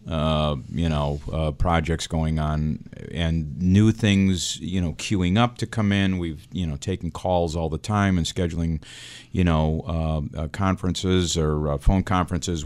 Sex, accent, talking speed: male, American, 170 wpm